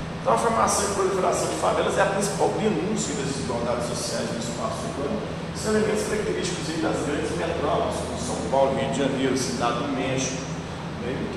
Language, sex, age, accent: Portuguese, male, 40-59, Brazilian